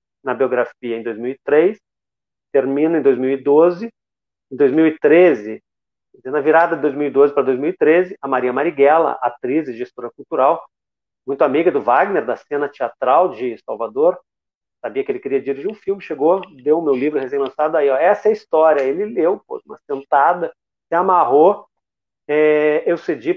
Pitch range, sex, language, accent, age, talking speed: 130-200 Hz, male, Portuguese, Brazilian, 40-59, 150 wpm